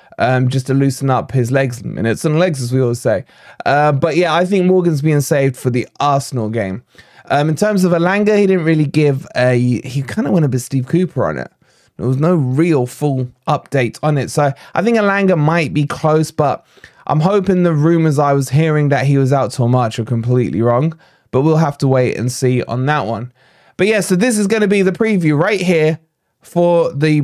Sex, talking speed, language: male, 225 wpm, English